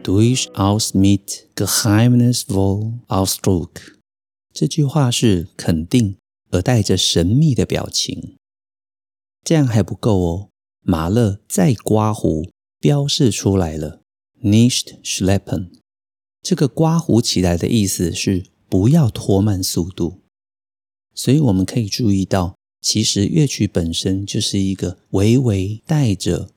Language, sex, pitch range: Chinese, male, 95-125 Hz